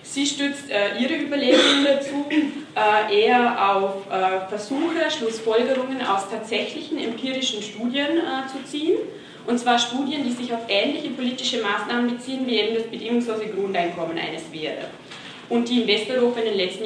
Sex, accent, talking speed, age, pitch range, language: female, German, 155 wpm, 20-39, 200-255 Hz, German